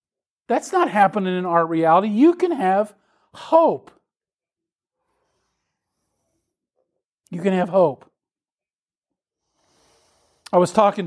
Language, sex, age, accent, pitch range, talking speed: English, male, 50-69, American, 170-235 Hz, 90 wpm